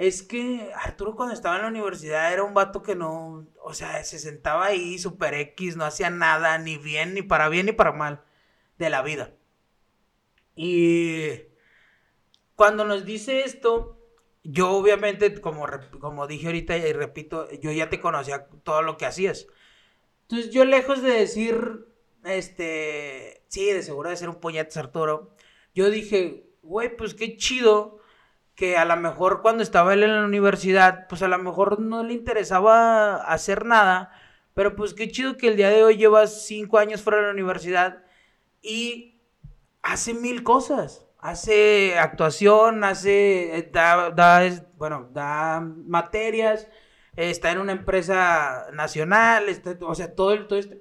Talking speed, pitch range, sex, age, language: 155 wpm, 165-215 Hz, male, 30-49, French